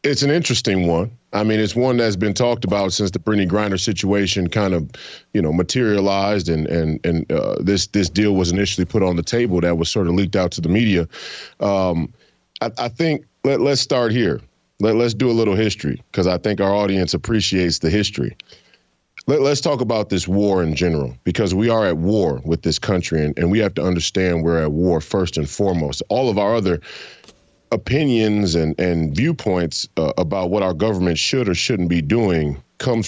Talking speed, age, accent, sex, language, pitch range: 205 wpm, 30-49, American, male, English, 85-105 Hz